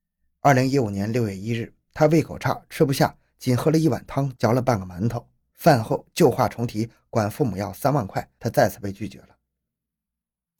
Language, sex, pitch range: Chinese, male, 95-130 Hz